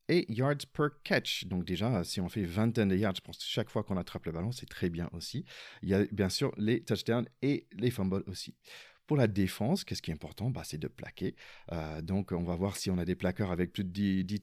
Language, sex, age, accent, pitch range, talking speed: French, male, 40-59, French, 90-110 Hz, 260 wpm